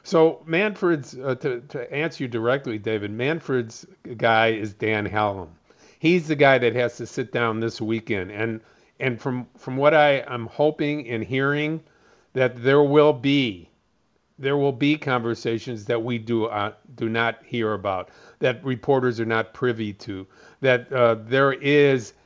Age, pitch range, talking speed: 50-69, 115-150 Hz, 160 wpm